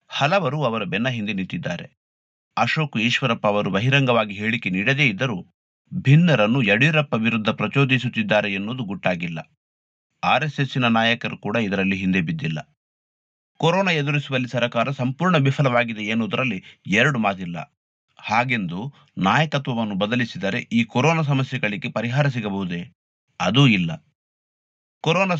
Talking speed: 100 wpm